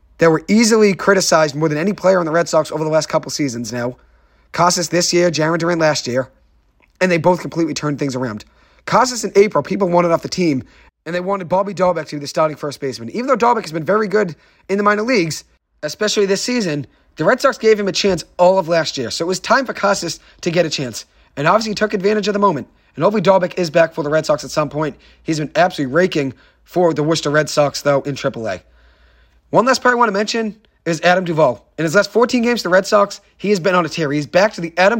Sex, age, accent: male, 30-49, American